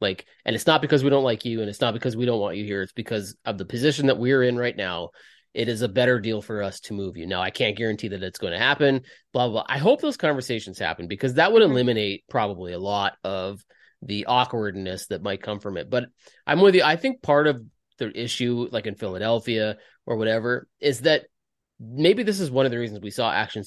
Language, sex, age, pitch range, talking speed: English, male, 30-49, 100-130 Hz, 245 wpm